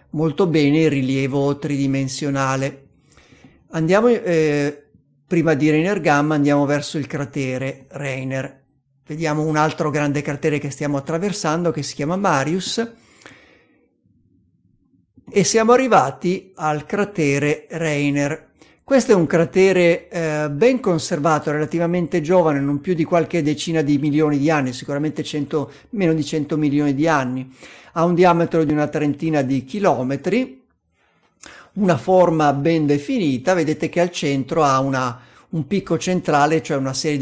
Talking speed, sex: 135 wpm, male